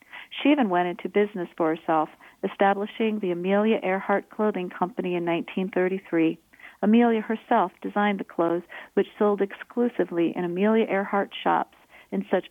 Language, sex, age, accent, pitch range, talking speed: English, female, 40-59, American, 175-210 Hz, 140 wpm